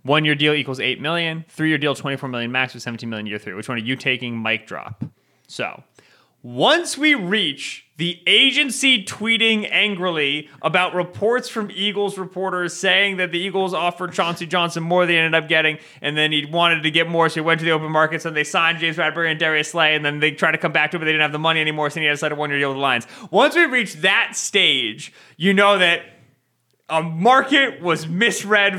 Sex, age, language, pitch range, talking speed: male, 30-49, English, 120-170 Hz, 235 wpm